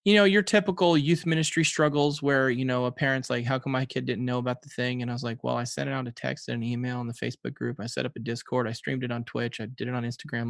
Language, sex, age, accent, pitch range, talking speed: English, male, 20-39, American, 120-145 Hz, 315 wpm